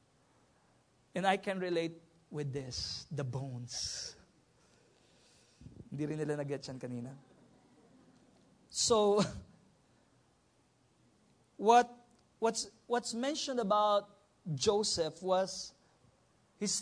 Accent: Filipino